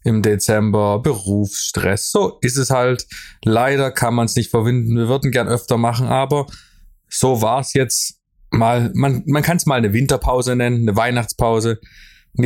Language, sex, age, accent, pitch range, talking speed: German, male, 20-39, German, 110-130 Hz, 160 wpm